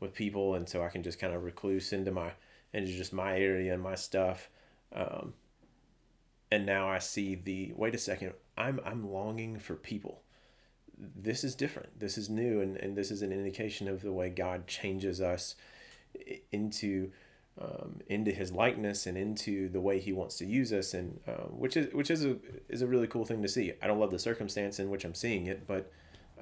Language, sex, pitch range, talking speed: English, male, 95-110 Hz, 205 wpm